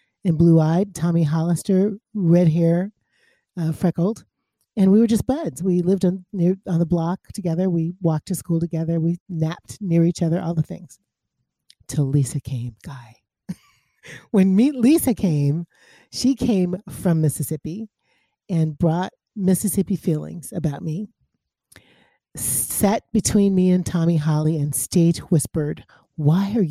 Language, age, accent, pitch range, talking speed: English, 40-59, American, 155-190 Hz, 145 wpm